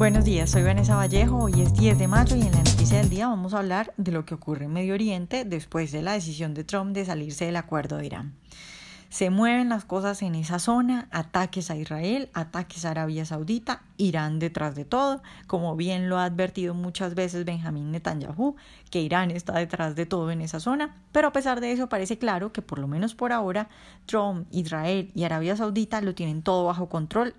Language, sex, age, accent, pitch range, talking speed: Spanish, female, 10-29, Colombian, 160-205 Hz, 210 wpm